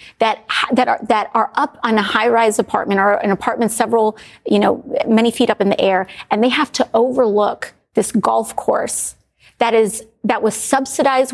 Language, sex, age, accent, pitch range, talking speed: English, female, 30-49, American, 210-270 Hz, 185 wpm